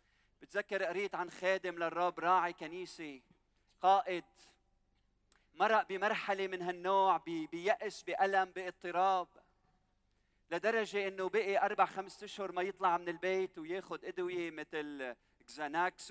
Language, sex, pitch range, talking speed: Arabic, male, 160-190 Hz, 110 wpm